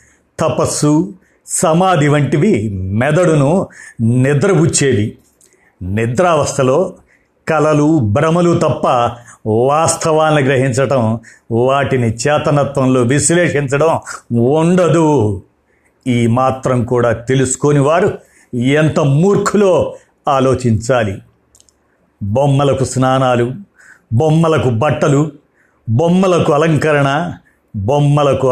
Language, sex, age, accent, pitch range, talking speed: Telugu, male, 50-69, native, 120-155 Hz, 65 wpm